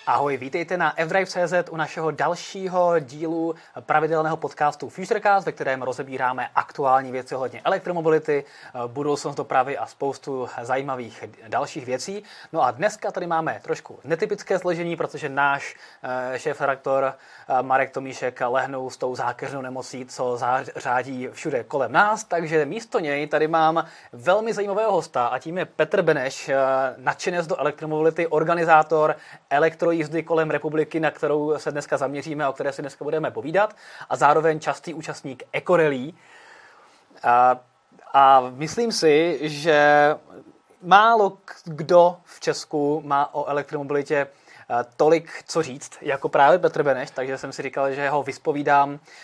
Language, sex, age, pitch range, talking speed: Czech, male, 20-39, 135-165 Hz, 135 wpm